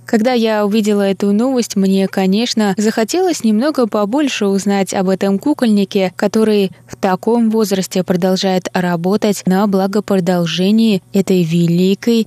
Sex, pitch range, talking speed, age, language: female, 180-220 Hz, 115 wpm, 20-39, Russian